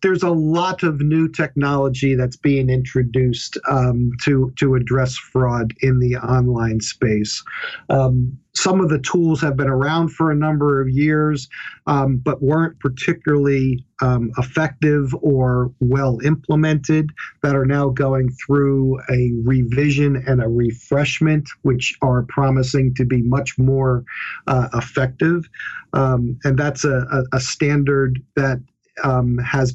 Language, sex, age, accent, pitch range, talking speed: English, male, 50-69, American, 125-145 Hz, 140 wpm